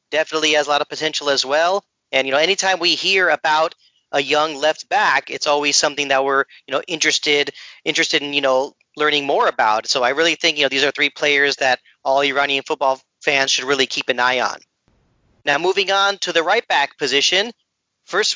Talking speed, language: 210 wpm, English